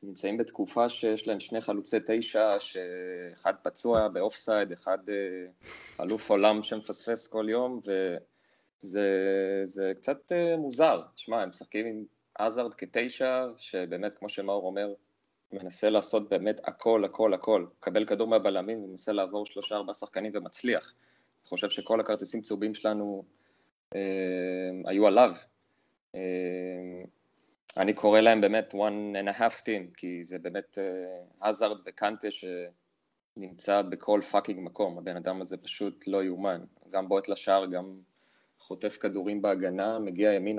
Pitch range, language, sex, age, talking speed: 95-110 Hz, Hebrew, male, 20-39, 130 wpm